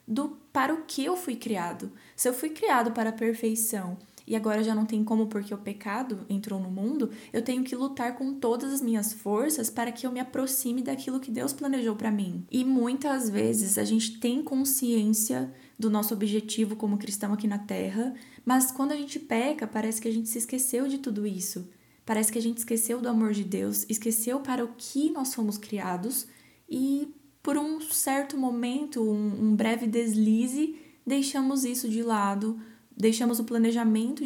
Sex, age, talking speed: female, 10-29, 185 wpm